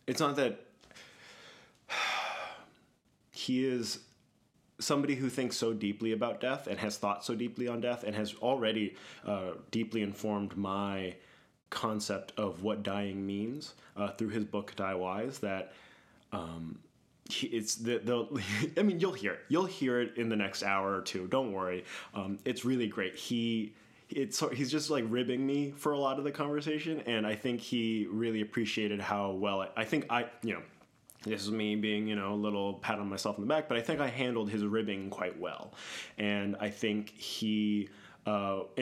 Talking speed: 180 wpm